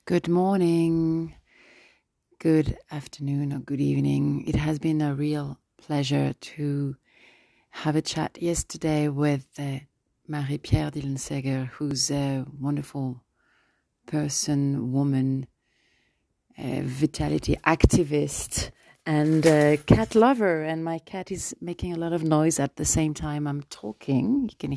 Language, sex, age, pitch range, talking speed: French, female, 30-49, 135-165 Hz, 125 wpm